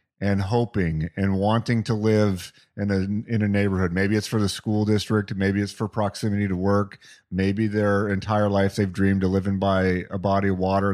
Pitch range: 105-140 Hz